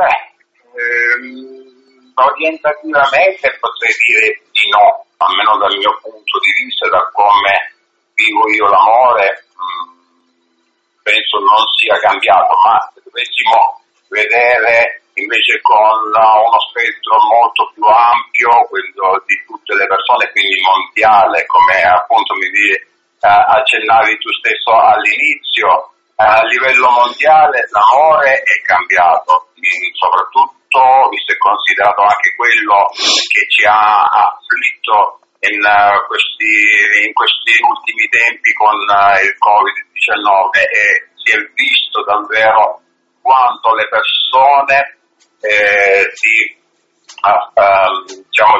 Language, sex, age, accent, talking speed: Italian, male, 50-69, native, 105 wpm